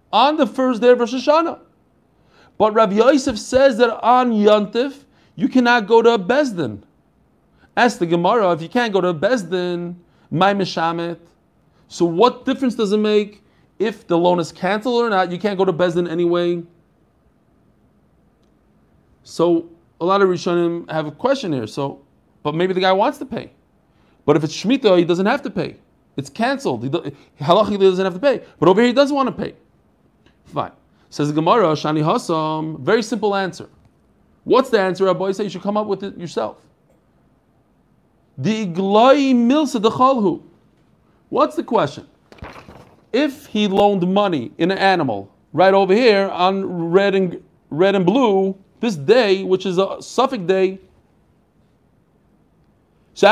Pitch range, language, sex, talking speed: 180-240 Hz, English, male, 160 wpm